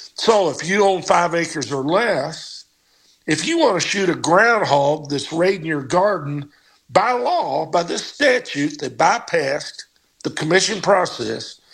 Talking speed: 150 wpm